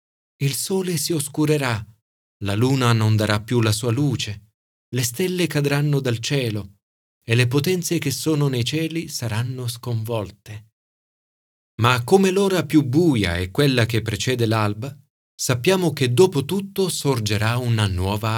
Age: 30-49